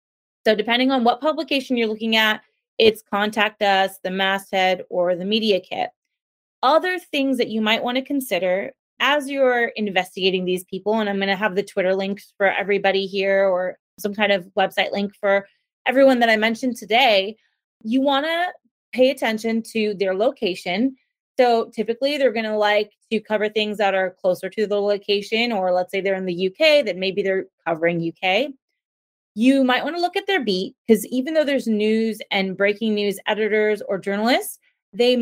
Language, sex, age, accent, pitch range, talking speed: English, female, 20-39, American, 200-255 Hz, 185 wpm